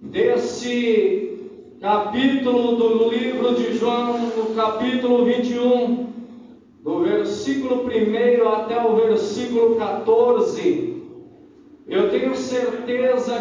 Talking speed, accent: 85 wpm, Brazilian